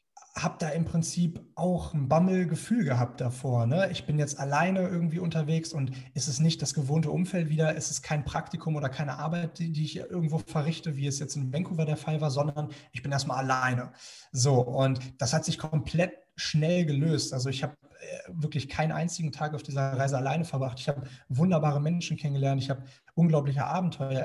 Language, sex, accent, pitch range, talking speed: German, male, German, 135-165 Hz, 195 wpm